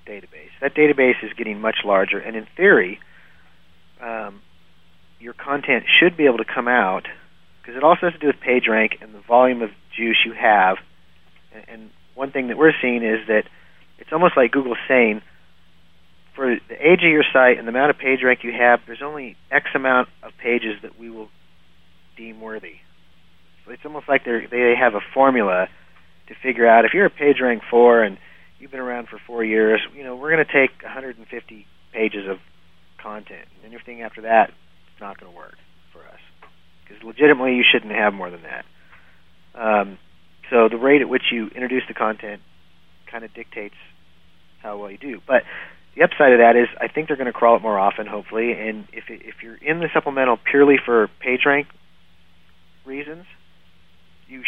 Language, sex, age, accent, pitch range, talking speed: English, male, 40-59, American, 85-125 Hz, 190 wpm